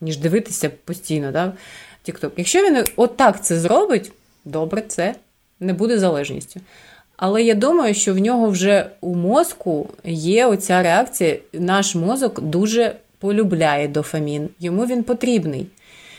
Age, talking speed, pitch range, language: 30-49, 130 wpm, 175-230 Hz, Ukrainian